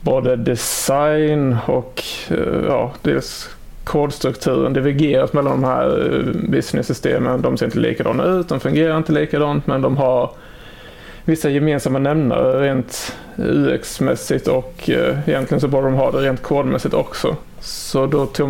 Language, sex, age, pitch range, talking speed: Swedish, male, 30-49, 135-160 Hz, 135 wpm